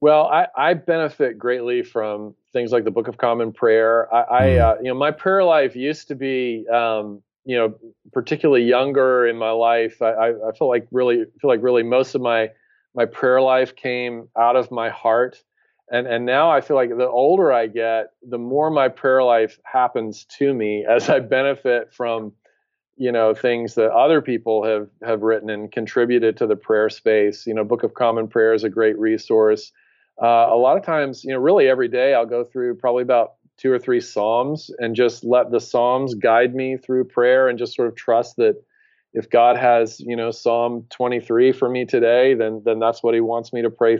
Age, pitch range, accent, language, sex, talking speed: 40-59, 115-130 Hz, American, English, male, 210 wpm